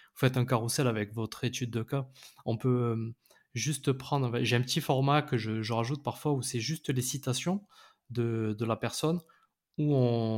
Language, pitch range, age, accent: French, 115-140 Hz, 20-39, French